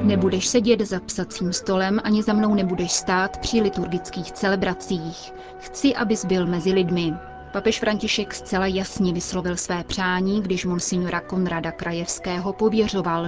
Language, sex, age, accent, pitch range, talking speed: Czech, female, 30-49, native, 175-205 Hz, 135 wpm